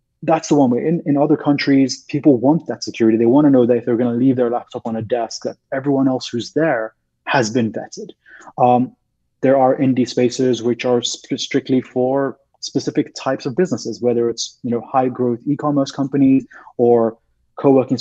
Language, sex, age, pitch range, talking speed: English, male, 20-39, 115-135 Hz, 195 wpm